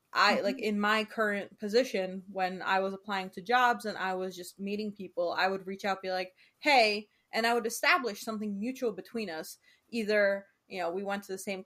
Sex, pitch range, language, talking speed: female, 185-220 Hz, English, 210 wpm